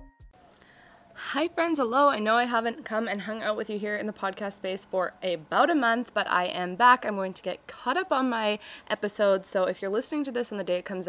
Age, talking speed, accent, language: 20-39, 250 wpm, American, English